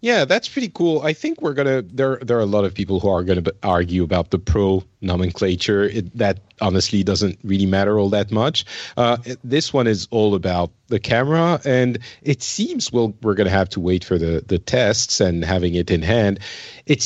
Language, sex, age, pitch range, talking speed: English, male, 40-59, 100-125 Hz, 210 wpm